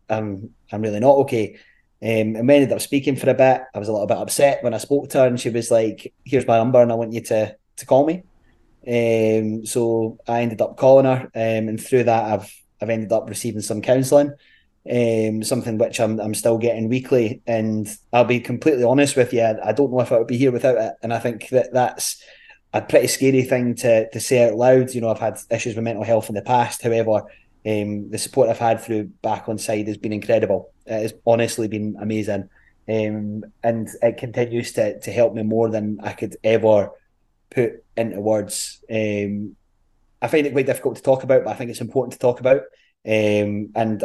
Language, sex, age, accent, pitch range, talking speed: English, male, 20-39, British, 110-125 Hz, 220 wpm